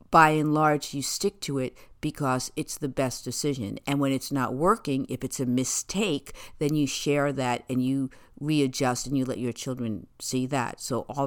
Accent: American